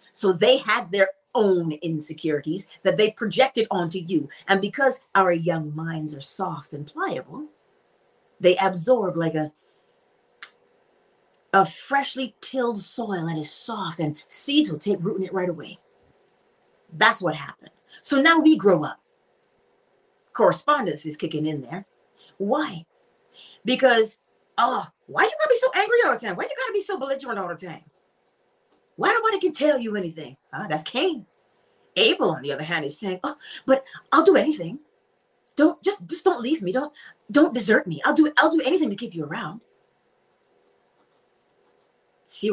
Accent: American